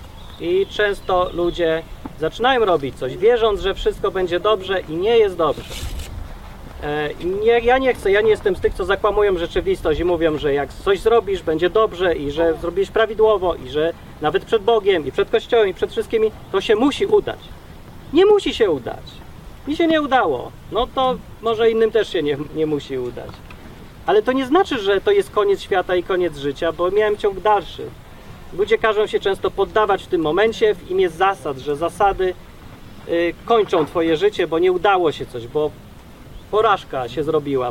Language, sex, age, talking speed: Polish, male, 30-49, 180 wpm